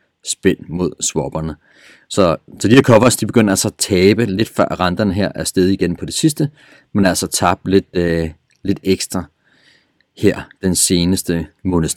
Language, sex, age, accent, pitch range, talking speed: Danish, male, 30-49, native, 90-105 Hz, 170 wpm